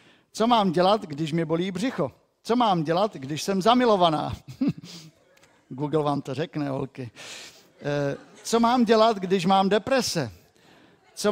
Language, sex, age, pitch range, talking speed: Czech, male, 50-69, 150-215 Hz, 135 wpm